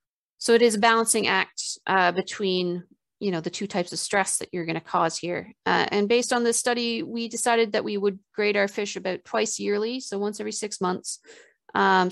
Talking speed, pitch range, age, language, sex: 220 wpm, 185-220 Hz, 40-59, English, female